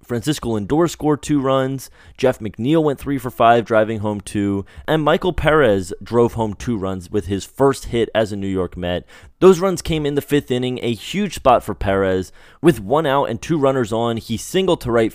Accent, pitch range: American, 110-140 Hz